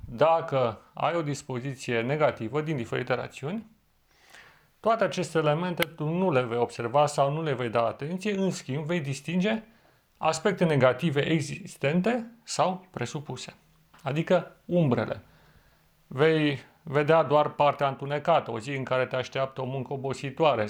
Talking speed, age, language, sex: 135 wpm, 30-49, Romanian, male